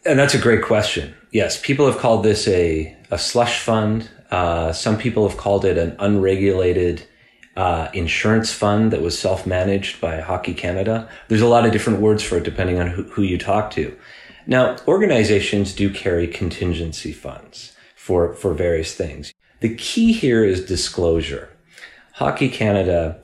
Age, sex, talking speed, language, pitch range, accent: 30-49, male, 165 wpm, English, 85-110 Hz, American